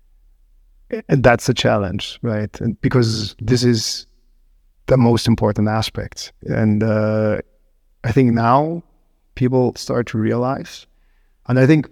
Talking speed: 120 wpm